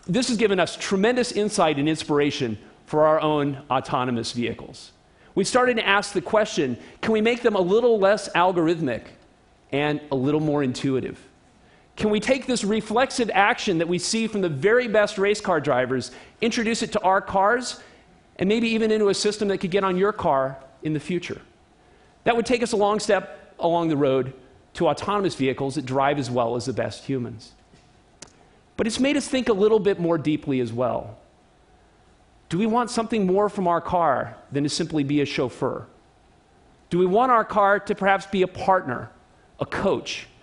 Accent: American